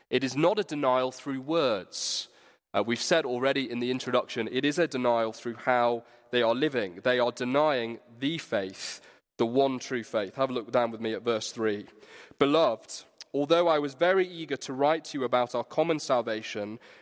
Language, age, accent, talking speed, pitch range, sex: English, 20-39, British, 195 wpm, 120-155 Hz, male